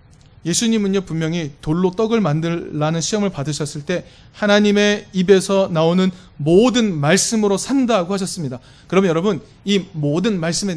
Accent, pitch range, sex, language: native, 145-200 Hz, male, Korean